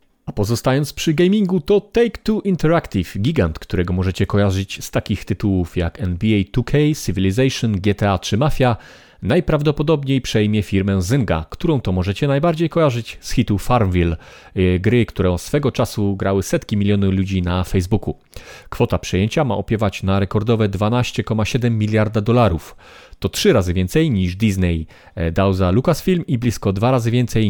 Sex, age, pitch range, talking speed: male, 30-49, 95-125 Hz, 145 wpm